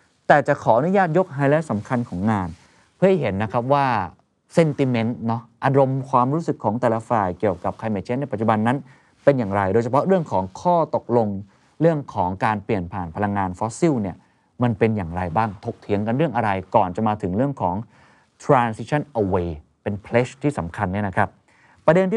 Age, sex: 30-49, male